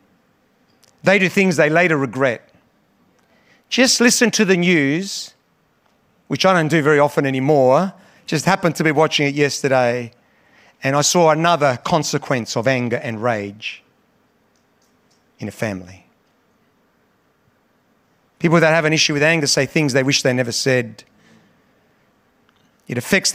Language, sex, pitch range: English, male, 135-185 Hz